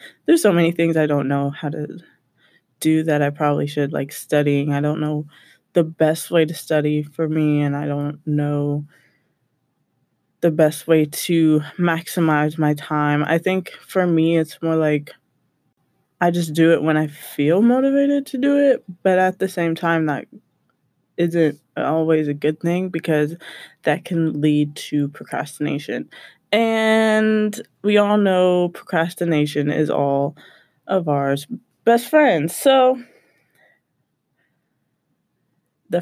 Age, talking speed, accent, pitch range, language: 20-39, 140 wpm, American, 150-180 Hz, English